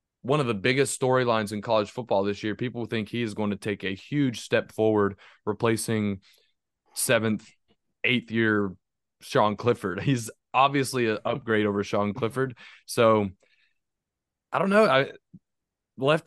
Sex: male